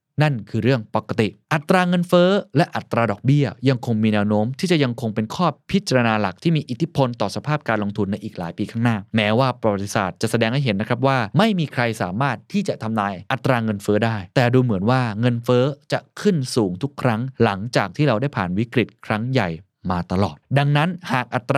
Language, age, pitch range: Thai, 20-39, 110-145 Hz